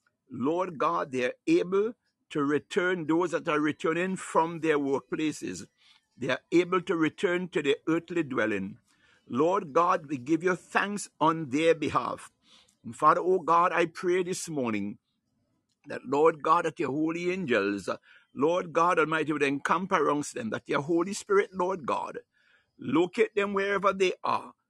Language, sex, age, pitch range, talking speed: English, male, 60-79, 160-190 Hz, 160 wpm